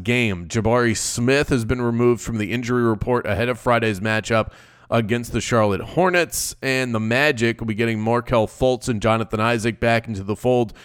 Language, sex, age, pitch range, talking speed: English, male, 30-49, 110-140 Hz, 185 wpm